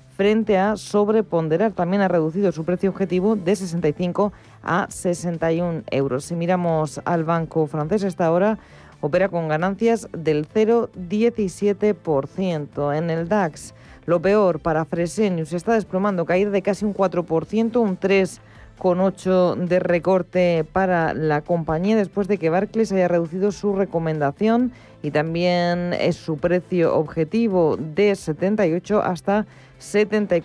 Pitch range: 160-200 Hz